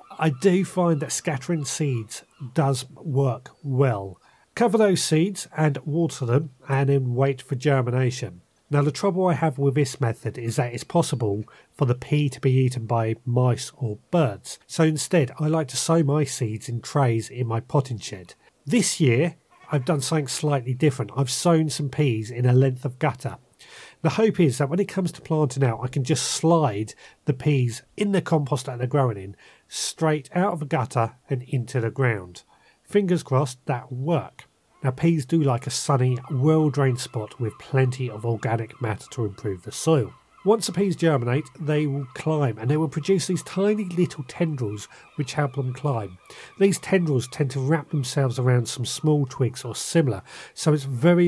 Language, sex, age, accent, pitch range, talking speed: English, male, 40-59, British, 125-160 Hz, 185 wpm